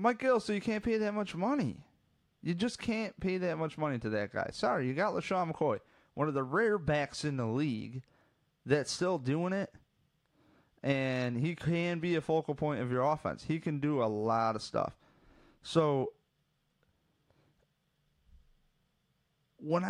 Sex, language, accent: male, English, American